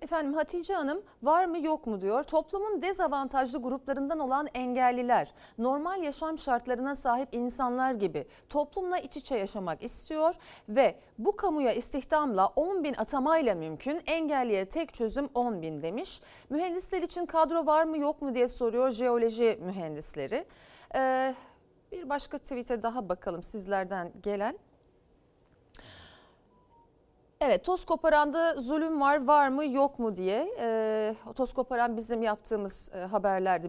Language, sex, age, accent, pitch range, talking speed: Turkish, female, 40-59, native, 230-320 Hz, 125 wpm